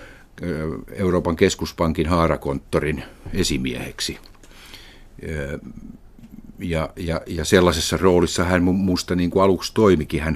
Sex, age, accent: male, 50-69, native